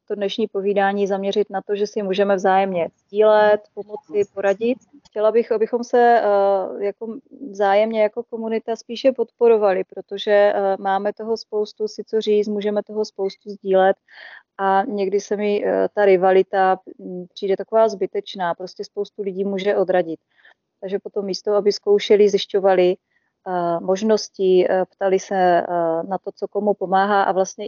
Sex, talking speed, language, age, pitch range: female, 135 wpm, Czech, 30-49, 185-205 Hz